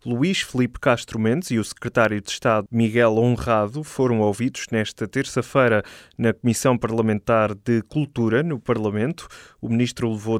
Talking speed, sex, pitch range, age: 145 wpm, male, 110-135 Hz, 20-39